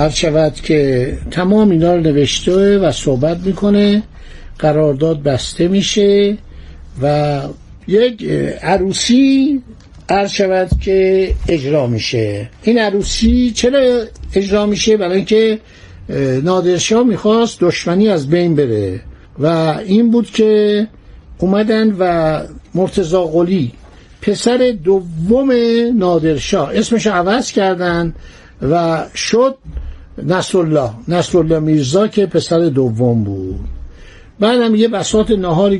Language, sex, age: Persian, male, 60-79